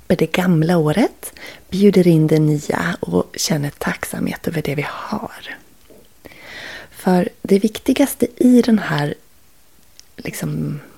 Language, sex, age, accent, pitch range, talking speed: Swedish, female, 30-49, native, 160-220 Hz, 120 wpm